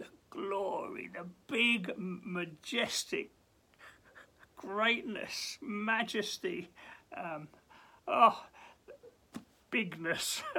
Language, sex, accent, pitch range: English, male, British, 205-315 Hz